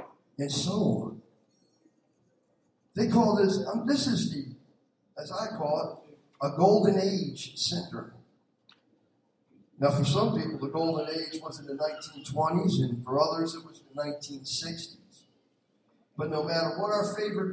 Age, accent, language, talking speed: 50-69, American, English, 140 wpm